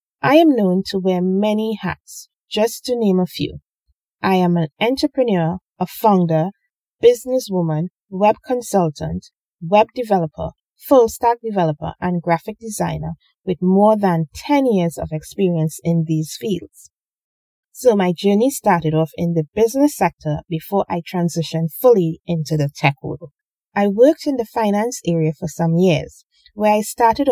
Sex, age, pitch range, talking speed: female, 30-49, 165-215 Hz, 145 wpm